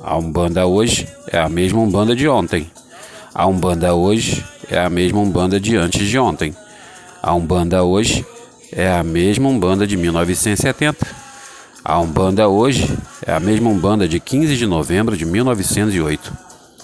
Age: 40-59